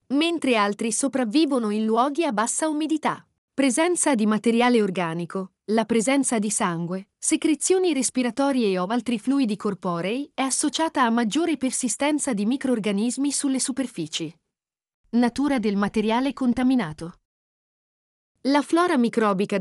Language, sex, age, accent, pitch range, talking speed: Italian, female, 40-59, native, 205-275 Hz, 115 wpm